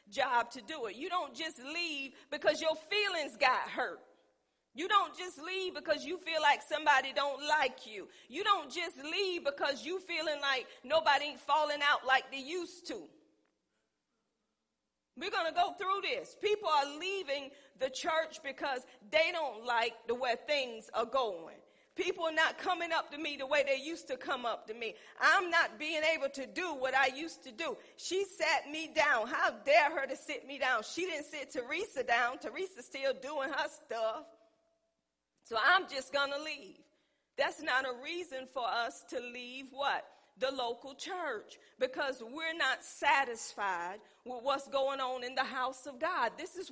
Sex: female